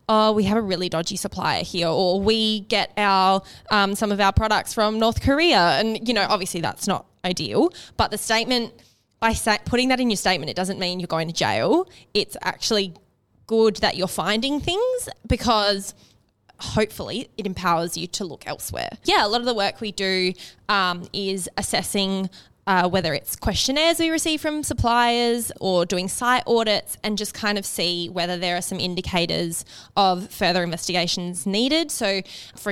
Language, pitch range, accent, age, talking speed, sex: English, 180-220 Hz, Australian, 20-39, 180 wpm, female